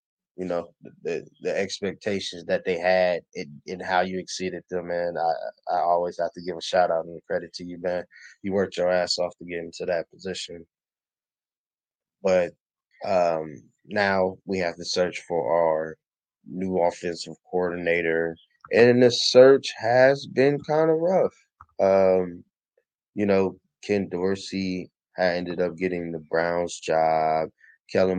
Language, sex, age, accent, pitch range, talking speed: English, male, 20-39, American, 85-100 Hz, 150 wpm